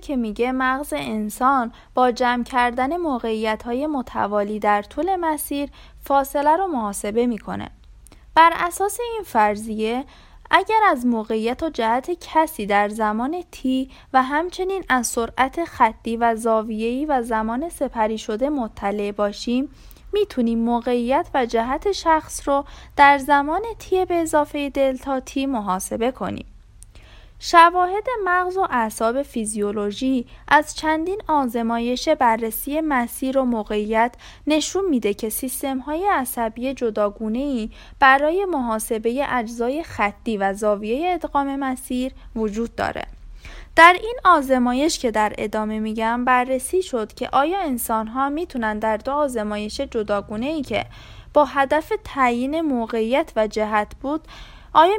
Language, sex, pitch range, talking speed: Persian, female, 225-300 Hz, 125 wpm